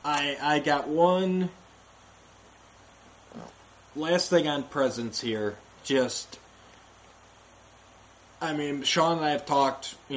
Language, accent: English, American